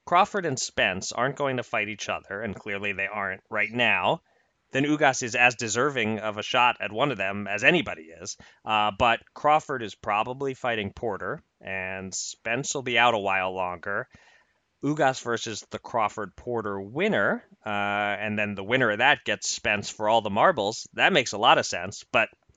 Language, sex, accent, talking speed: English, male, American, 185 wpm